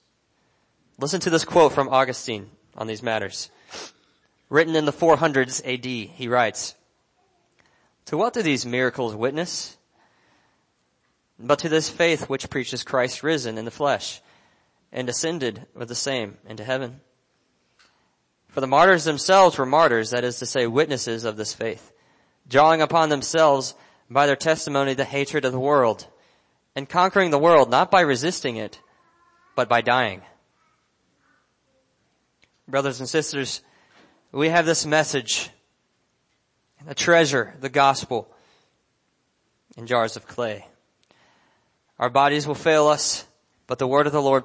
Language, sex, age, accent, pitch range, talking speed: English, male, 20-39, American, 125-160 Hz, 140 wpm